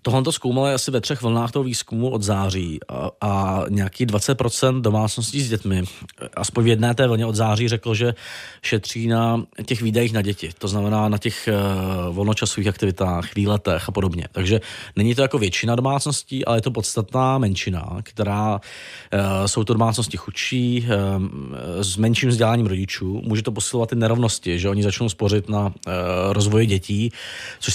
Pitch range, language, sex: 100-120 Hz, Czech, male